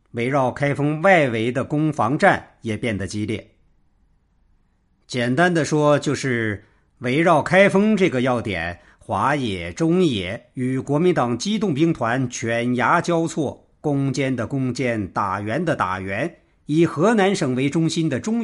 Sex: male